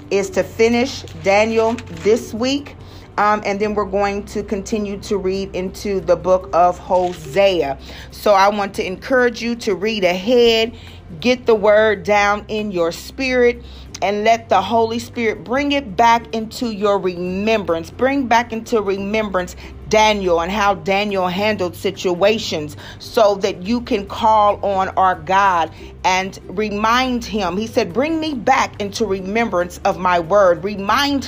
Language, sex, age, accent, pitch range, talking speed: English, female, 40-59, American, 185-230 Hz, 150 wpm